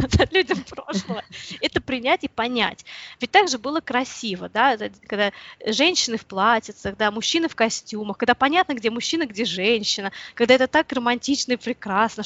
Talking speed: 155 wpm